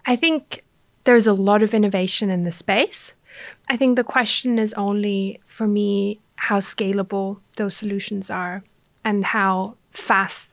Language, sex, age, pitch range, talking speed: English, female, 30-49, 195-220 Hz, 150 wpm